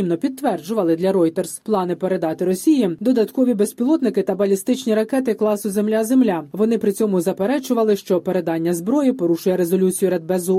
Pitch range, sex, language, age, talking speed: 185-230 Hz, female, Ukrainian, 20-39, 130 wpm